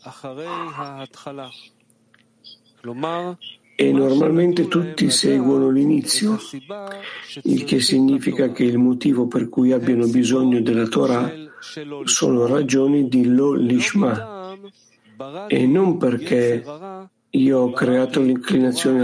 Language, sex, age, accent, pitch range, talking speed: Italian, male, 50-69, native, 125-160 Hz, 90 wpm